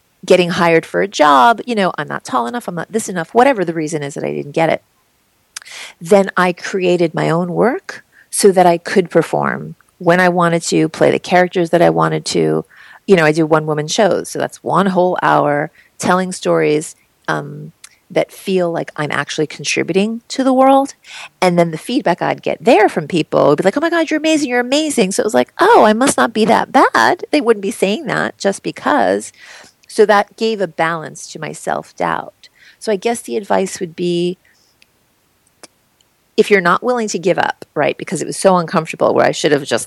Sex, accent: female, American